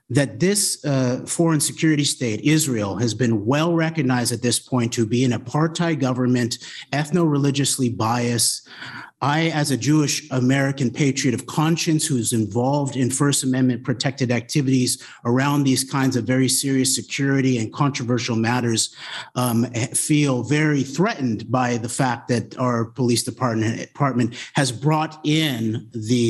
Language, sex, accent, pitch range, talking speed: English, male, American, 120-145 Hz, 140 wpm